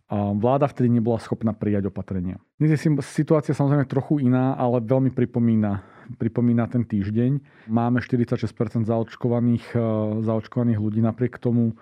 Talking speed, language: 125 wpm, Slovak